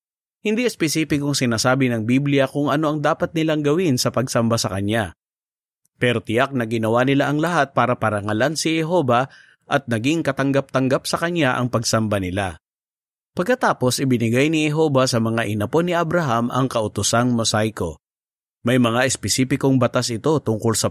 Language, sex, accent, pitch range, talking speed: Filipino, male, native, 115-145 Hz, 150 wpm